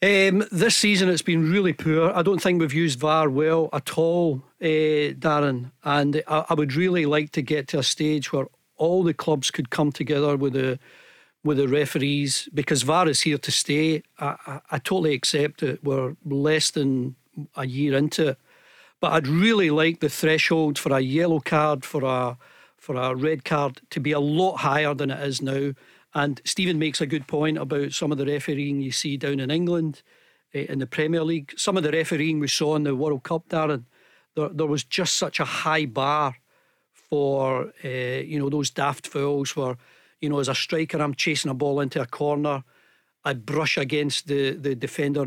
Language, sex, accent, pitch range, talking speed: English, male, British, 140-160 Hz, 195 wpm